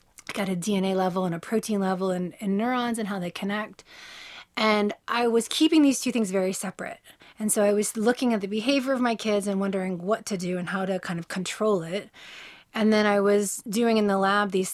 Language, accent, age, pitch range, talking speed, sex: English, American, 30-49, 185-225 Hz, 230 wpm, female